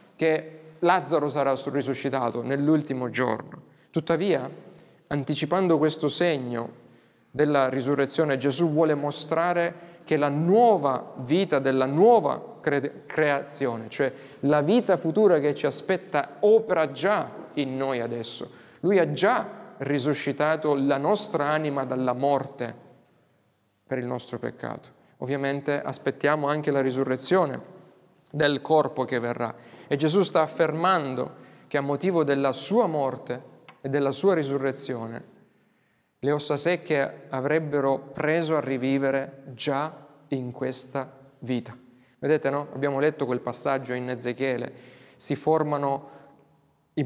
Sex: male